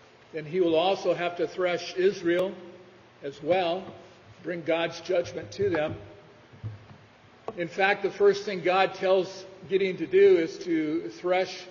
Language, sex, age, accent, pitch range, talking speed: English, male, 50-69, American, 145-185 Hz, 145 wpm